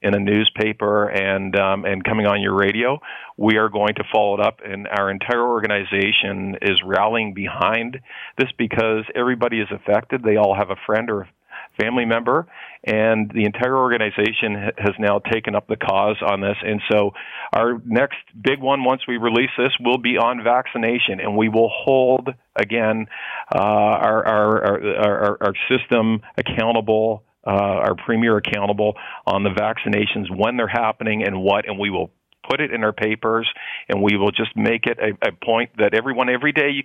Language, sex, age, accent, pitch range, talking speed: English, male, 50-69, American, 105-125 Hz, 180 wpm